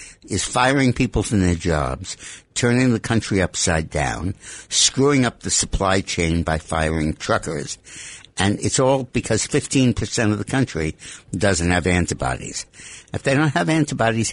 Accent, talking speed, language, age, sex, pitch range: American, 145 wpm, English, 60-79, male, 85-115 Hz